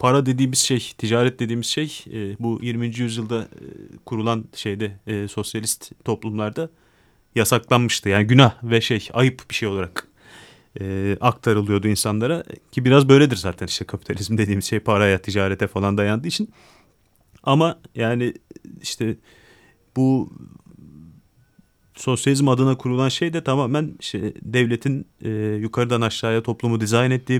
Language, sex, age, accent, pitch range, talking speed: Turkish, male, 30-49, native, 110-135 Hz, 120 wpm